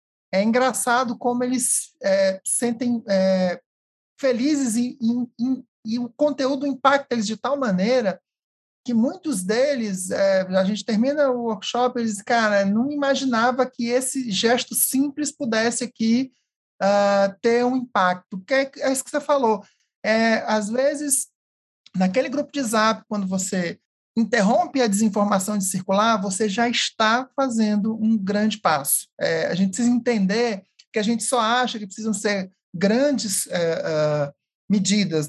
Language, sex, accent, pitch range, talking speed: Portuguese, male, Brazilian, 190-250 Hz, 140 wpm